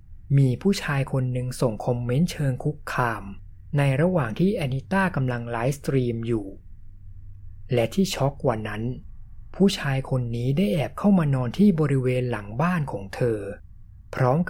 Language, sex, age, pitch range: Thai, male, 20-39, 105-145 Hz